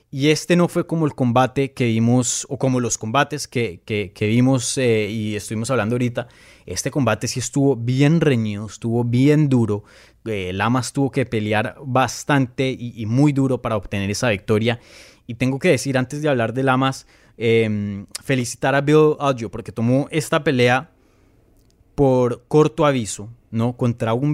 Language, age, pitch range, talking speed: Spanish, 20-39, 110-140 Hz, 170 wpm